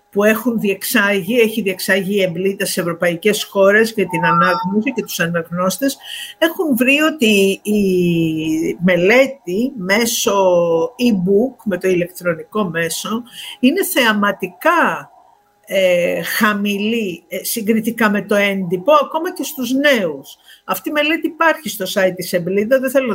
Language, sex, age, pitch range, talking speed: Greek, female, 50-69, 185-255 Hz, 120 wpm